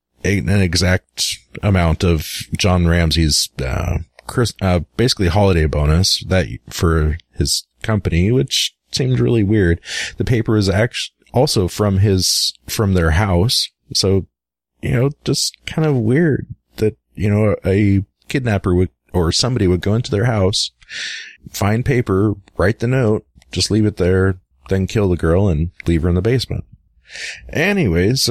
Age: 30-49